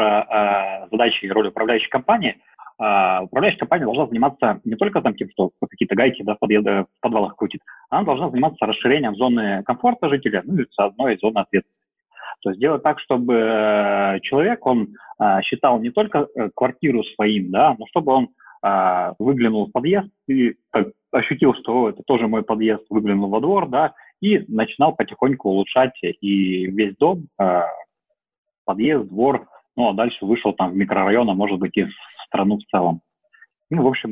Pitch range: 105-155 Hz